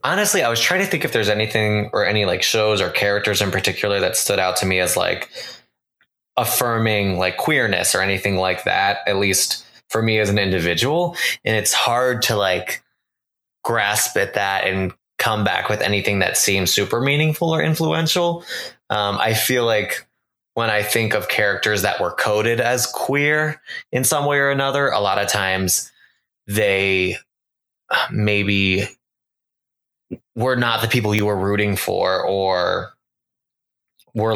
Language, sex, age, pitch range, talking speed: English, male, 20-39, 95-120 Hz, 160 wpm